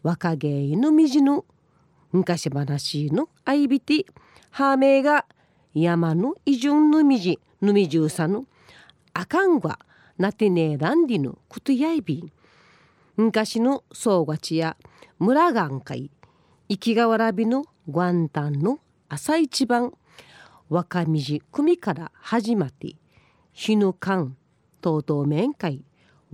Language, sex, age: Japanese, female, 40-59